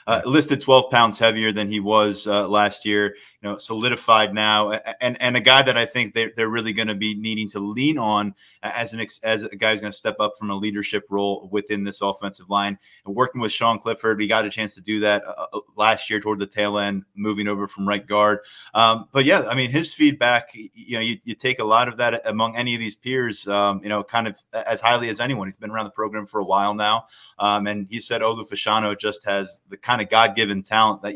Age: 20-39